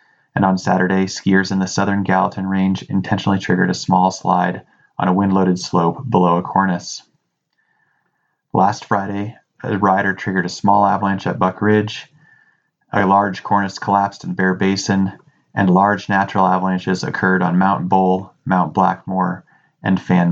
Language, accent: English, American